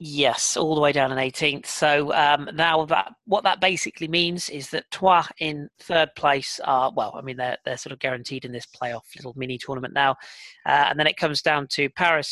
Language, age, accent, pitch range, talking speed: English, 30-49, British, 130-165 Hz, 220 wpm